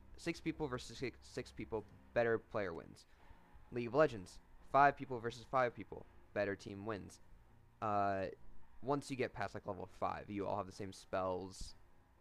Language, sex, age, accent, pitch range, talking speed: English, male, 20-39, American, 90-110 Hz, 165 wpm